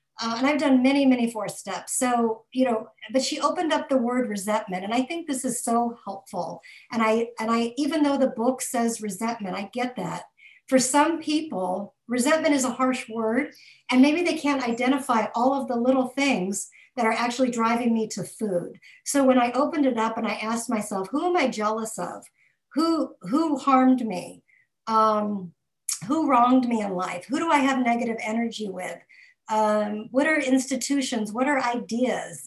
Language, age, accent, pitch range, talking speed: English, 50-69, American, 215-260 Hz, 190 wpm